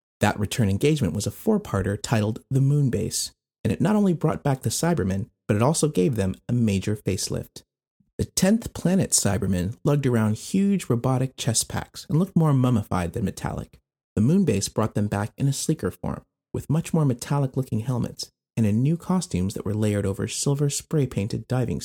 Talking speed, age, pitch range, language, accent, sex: 180 wpm, 30-49, 105-145 Hz, English, American, male